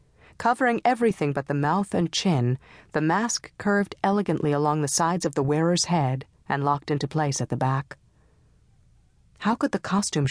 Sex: female